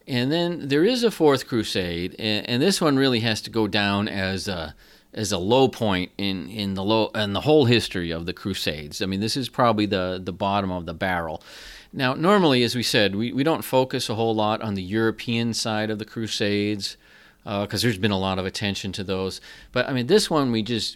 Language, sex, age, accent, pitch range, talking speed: English, male, 40-59, American, 95-115 Hz, 225 wpm